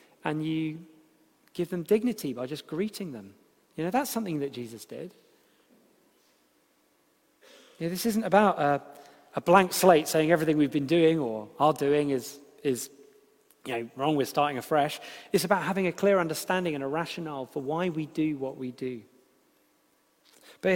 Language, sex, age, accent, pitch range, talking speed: English, male, 30-49, British, 145-195 Hz, 165 wpm